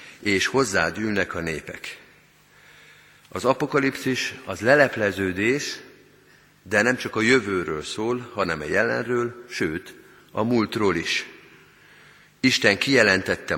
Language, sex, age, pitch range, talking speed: Hungarian, male, 50-69, 95-125 Hz, 105 wpm